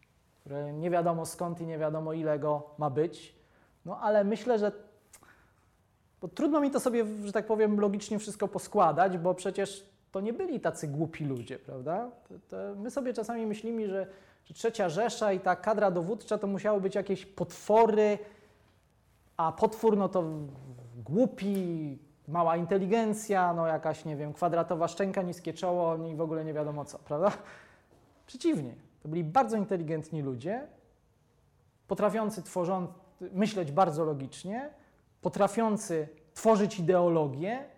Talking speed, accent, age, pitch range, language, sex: 140 wpm, native, 20-39, 155-210 Hz, Polish, male